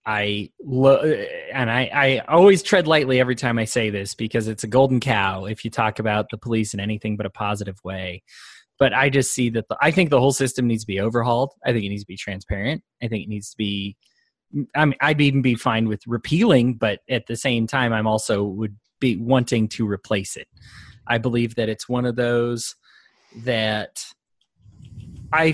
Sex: male